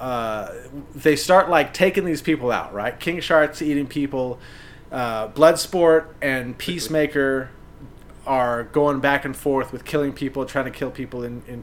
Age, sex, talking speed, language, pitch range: 30-49, male, 160 wpm, English, 135-170 Hz